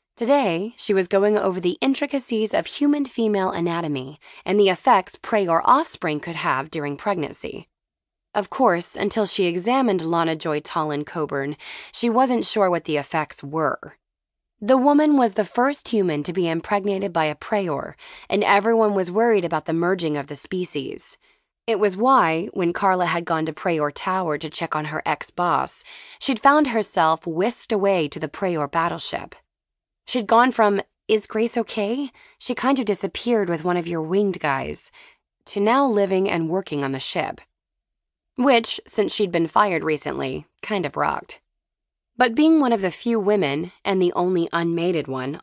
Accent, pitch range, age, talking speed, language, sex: American, 165-230 Hz, 20-39, 165 wpm, English, female